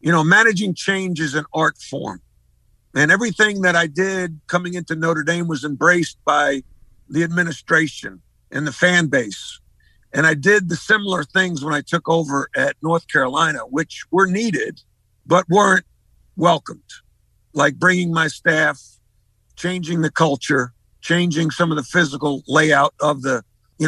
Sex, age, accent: male, 50-69, American